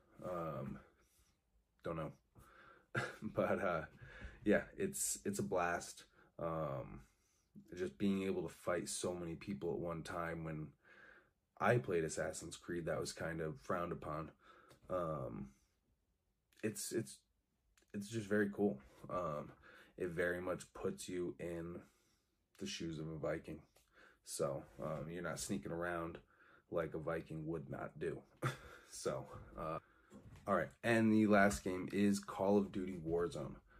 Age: 30-49